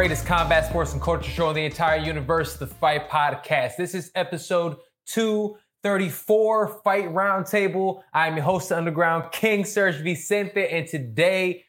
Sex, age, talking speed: male, 20-39, 150 wpm